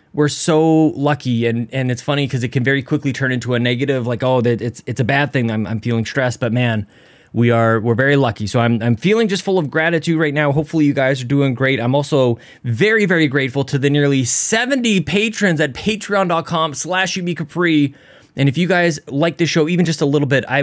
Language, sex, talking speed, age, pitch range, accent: English, male, 225 wpm, 20-39, 120-165 Hz, American